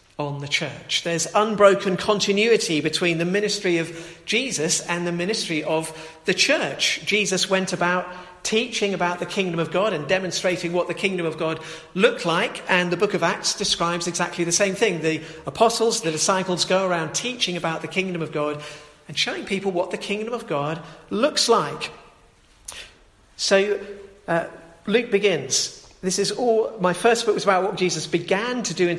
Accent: British